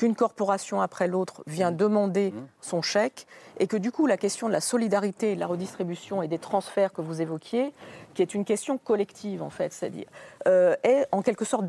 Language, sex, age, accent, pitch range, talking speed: French, female, 40-59, French, 180-240 Hz, 200 wpm